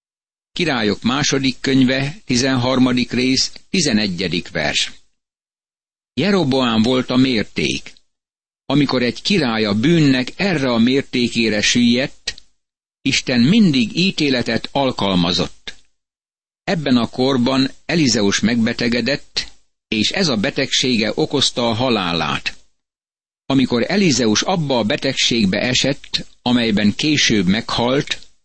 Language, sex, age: Hungarian, male, 60-79